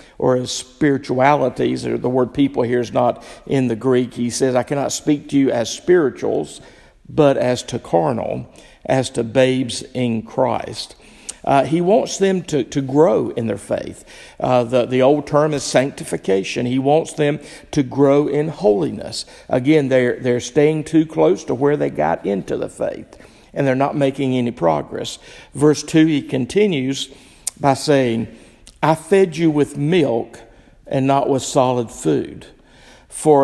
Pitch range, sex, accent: 125-145 Hz, male, American